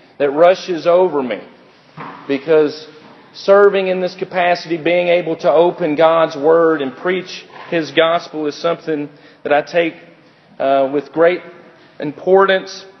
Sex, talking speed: male, 130 wpm